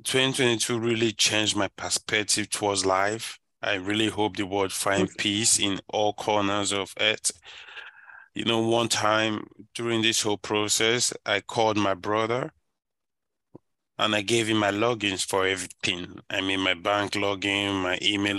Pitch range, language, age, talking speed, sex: 100-110 Hz, English, 20-39, 150 wpm, male